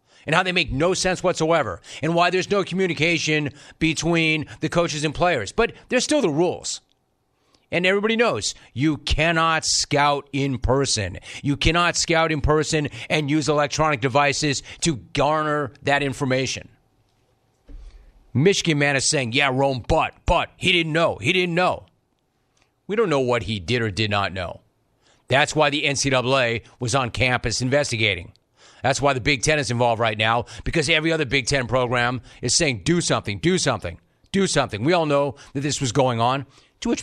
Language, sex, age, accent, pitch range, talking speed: English, male, 40-59, American, 125-165 Hz, 175 wpm